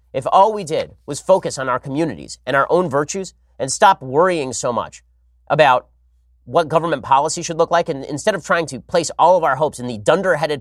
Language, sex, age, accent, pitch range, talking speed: English, male, 30-49, American, 115-165 Hz, 215 wpm